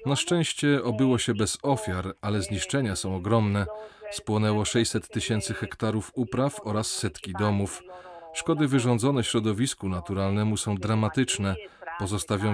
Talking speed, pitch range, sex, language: 120 wpm, 100-125 Hz, male, Polish